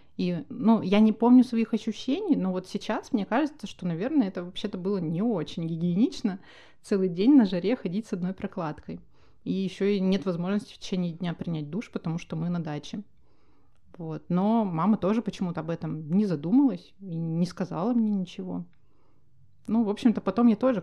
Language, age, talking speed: Russian, 30-49, 180 wpm